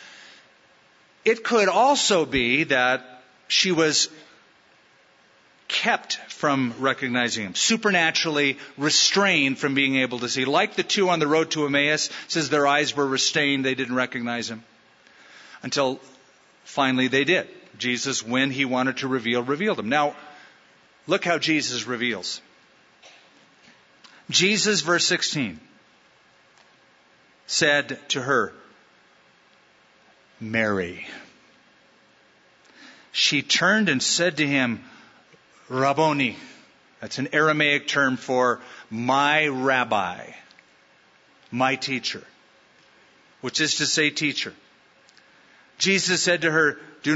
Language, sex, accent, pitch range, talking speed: English, male, American, 130-160 Hz, 110 wpm